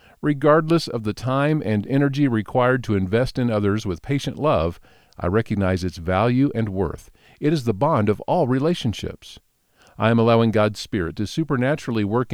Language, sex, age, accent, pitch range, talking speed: English, male, 50-69, American, 100-140 Hz, 170 wpm